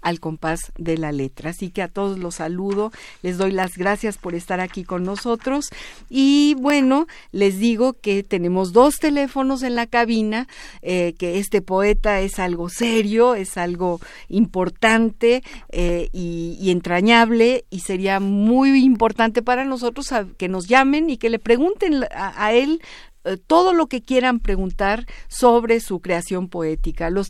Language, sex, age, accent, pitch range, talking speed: Spanish, female, 50-69, Mexican, 185-240 Hz, 155 wpm